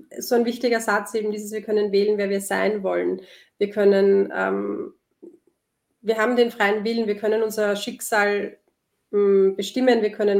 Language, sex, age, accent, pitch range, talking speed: German, female, 30-49, German, 200-245 Hz, 160 wpm